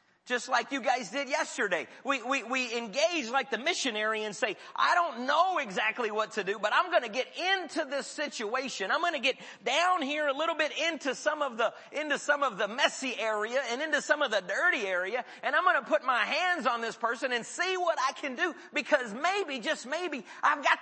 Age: 40-59